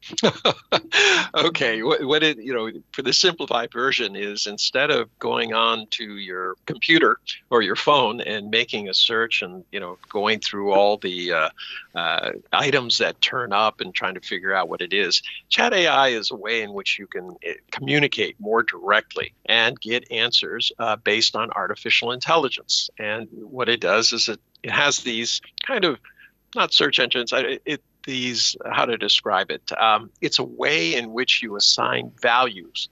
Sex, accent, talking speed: male, American, 175 wpm